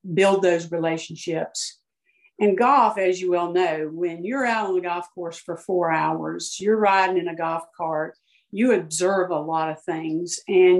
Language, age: English, 50-69